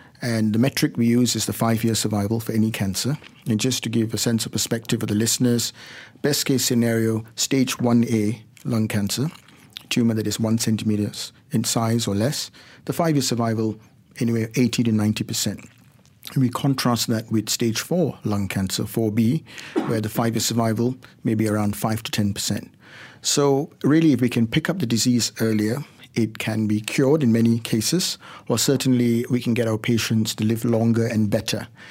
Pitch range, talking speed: 110-125 Hz, 180 wpm